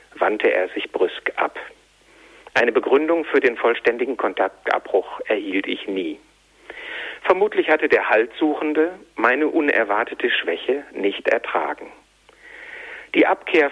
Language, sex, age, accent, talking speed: German, male, 60-79, German, 110 wpm